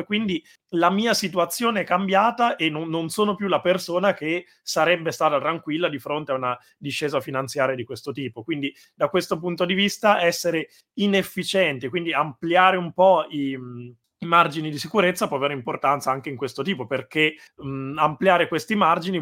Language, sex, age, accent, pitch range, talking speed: Italian, male, 30-49, native, 140-175 Hz, 170 wpm